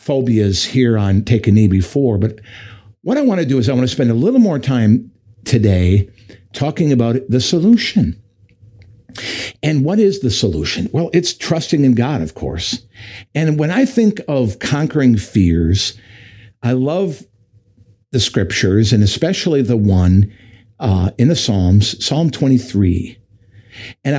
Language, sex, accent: English, male, American